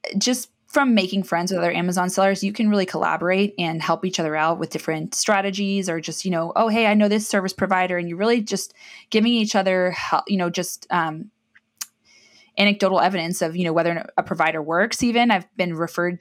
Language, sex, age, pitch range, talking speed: English, female, 20-39, 165-200 Hz, 205 wpm